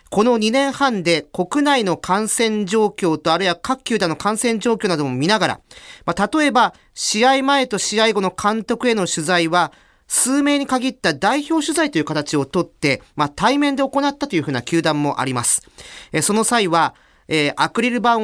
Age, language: 40-59, Japanese